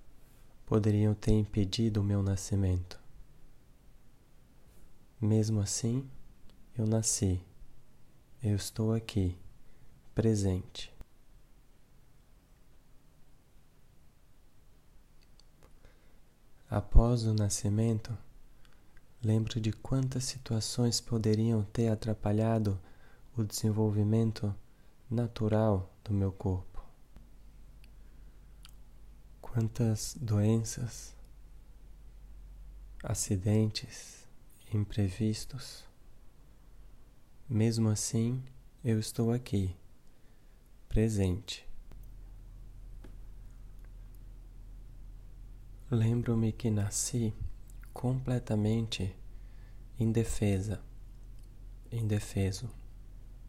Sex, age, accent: male, 20-39, Brazilian